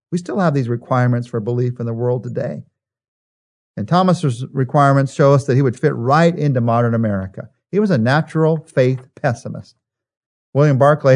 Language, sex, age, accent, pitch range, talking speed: English, male, 50-69, American, 120-150 Hz, 170 wpm